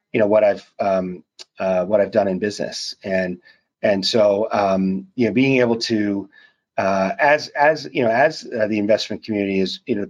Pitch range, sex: 95-120 Hz, male